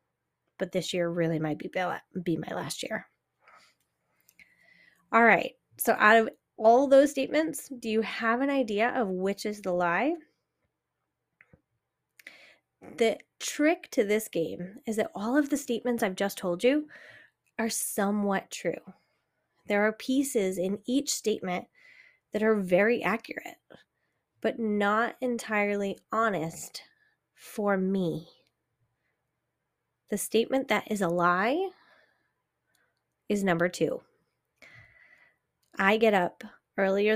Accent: American